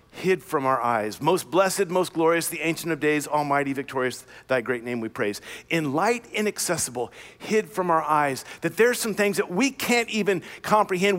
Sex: male